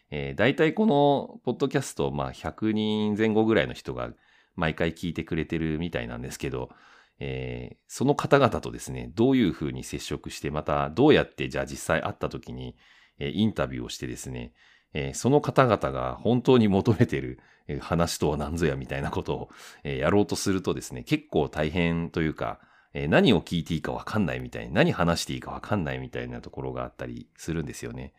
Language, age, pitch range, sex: Japanese, 40-59, 65-110 Hz, male